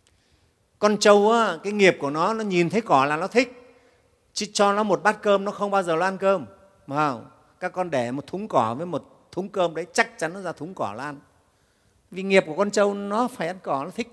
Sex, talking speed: male, 245 wpm